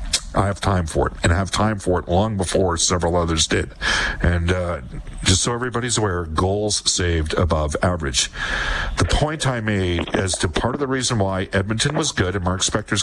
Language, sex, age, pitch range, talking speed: English, male, 50-69, 85-110 Hz, 200 wpm